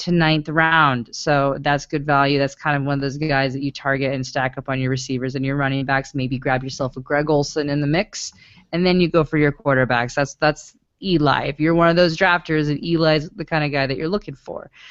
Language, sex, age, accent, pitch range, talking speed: English, female, 30-49, American, 135-190 Hz, 250 wpm